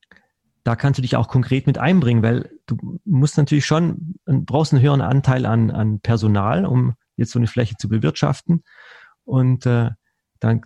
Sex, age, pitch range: male, 30-49, 120-150 Hz